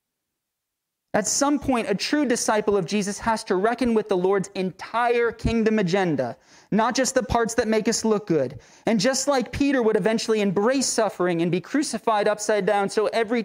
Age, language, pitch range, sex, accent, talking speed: 30-49, English, 195-255 Hz, male, American, 185 wpm